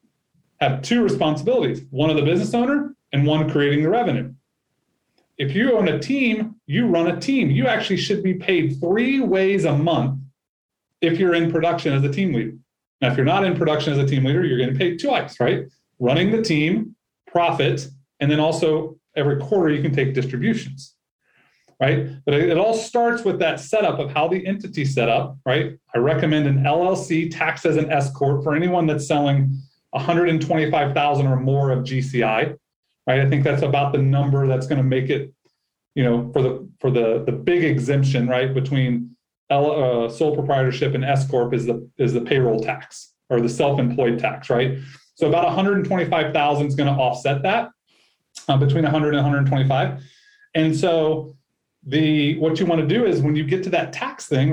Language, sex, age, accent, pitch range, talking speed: English, male, 30-49, American, 135-170 Hz, 190 wpm